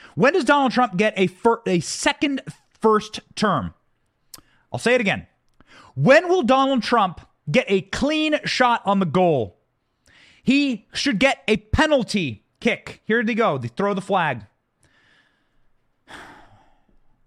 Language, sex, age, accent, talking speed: English, male, 30-49, American, 140 wpm